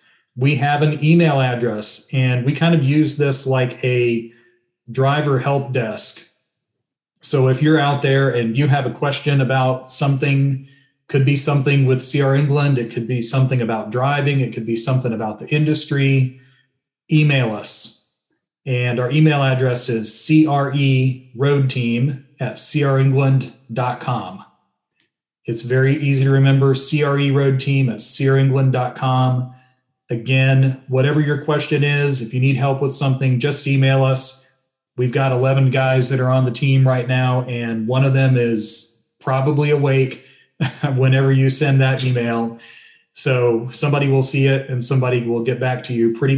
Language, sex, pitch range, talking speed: English, male, 125-140 Hz, 155 wpm